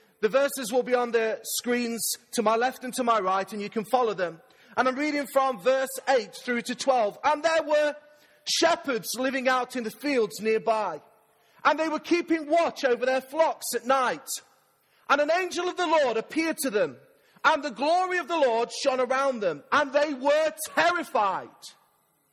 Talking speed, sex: 190 wpm, male